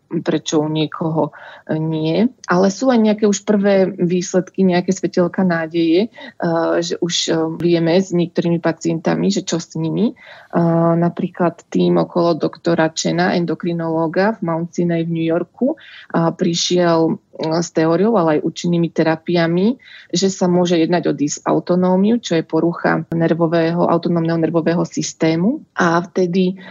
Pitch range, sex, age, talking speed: 160-180 Hz, female, 20-39, 130 wpm